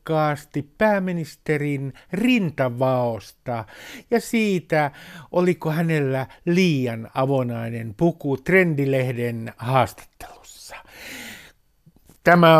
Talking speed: 55 wpm